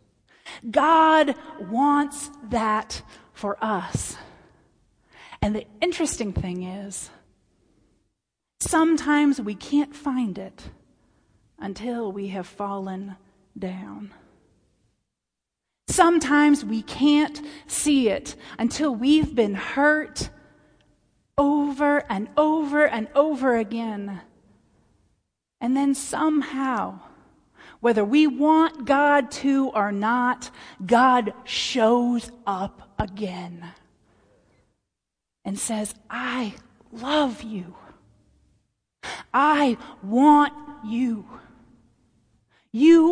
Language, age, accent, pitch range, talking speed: English, 30-49, American, 190-285 Hz, 80 wpm